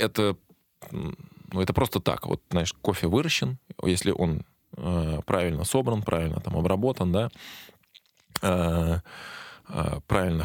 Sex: male